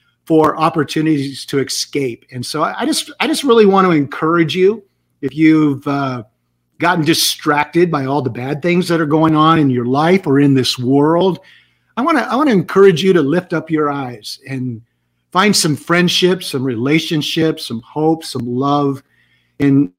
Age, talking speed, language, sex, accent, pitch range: 50-69, 185 wpm, English, male, American, 135-165 Hz